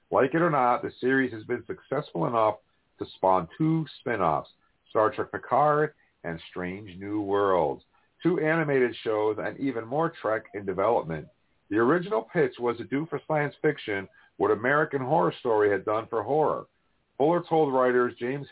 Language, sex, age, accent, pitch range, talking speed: English, male, 50-69, American, 110-145 Hz, 165 wpm